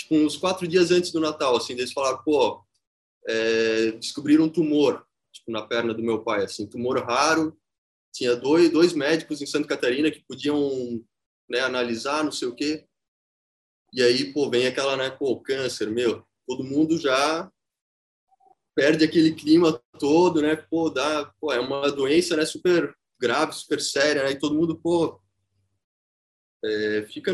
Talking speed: 160 wpm